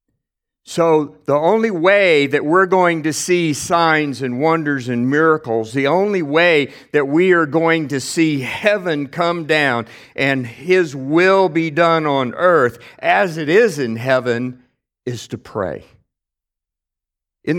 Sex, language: male, English